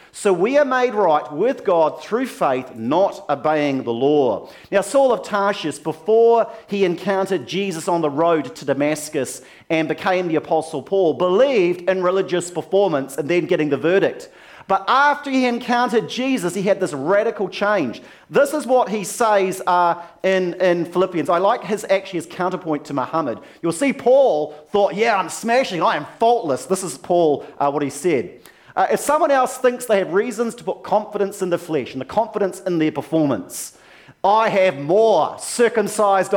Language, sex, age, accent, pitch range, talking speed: English, male, 40-59, Australian, 160-220 Hz, 180 wpm